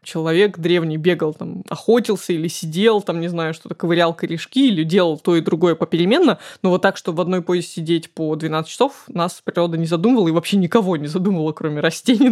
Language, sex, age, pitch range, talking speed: Russian, female, 20-39, 170-215 Hz, 200 wpm